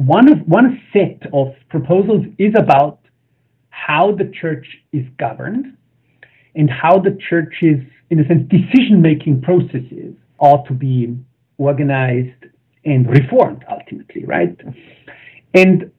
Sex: male